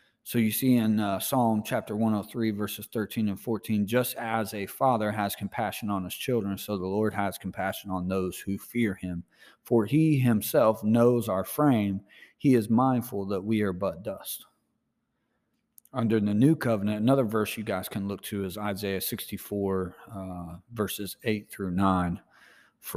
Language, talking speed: English, 155 wpm